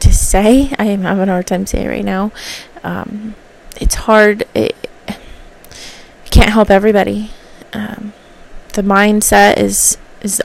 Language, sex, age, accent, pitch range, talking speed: English, female, 20-39, American, 200-225 Hz, 125 wpm